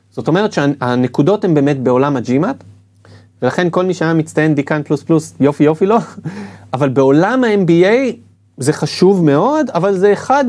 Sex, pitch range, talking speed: male, 125-190 Hz, 155 wpm